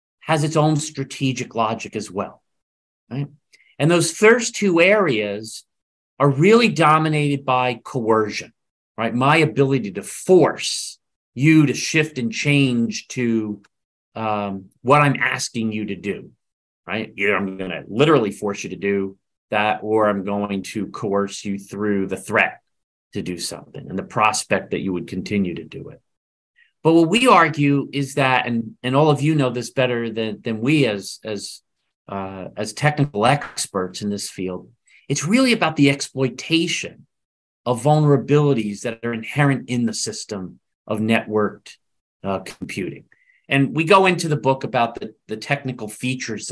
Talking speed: 160 wpm